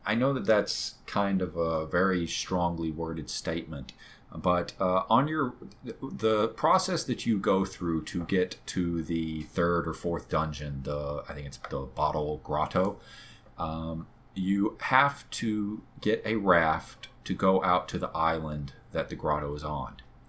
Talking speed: 160 wpm